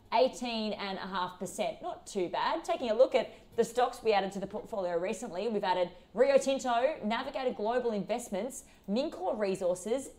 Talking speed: 160 wpm